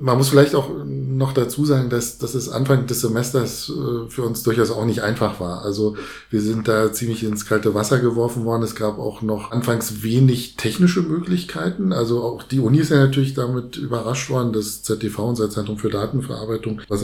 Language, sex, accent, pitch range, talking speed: German, male, German, 105-130 Hz, 195 wpm